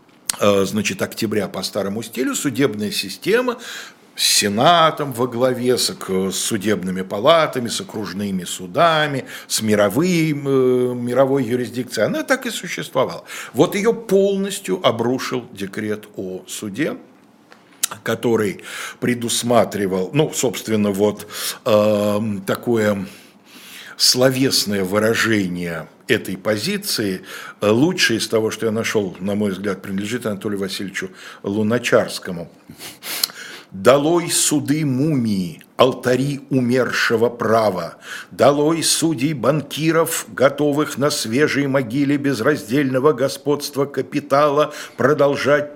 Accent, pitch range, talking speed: native, 105-145 Hz, 95 wpm